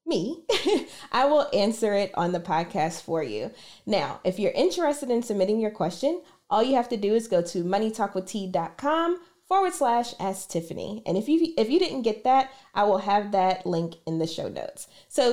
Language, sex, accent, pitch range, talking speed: English, female, American, 180-260 Hz, 185 wpm